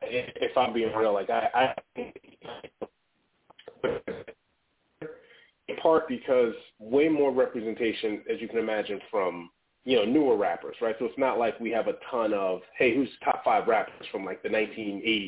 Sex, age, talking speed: male, 30-49, 155 wpm